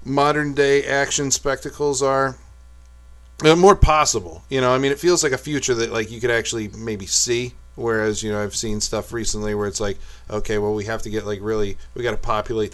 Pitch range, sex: 105-130 Hz, male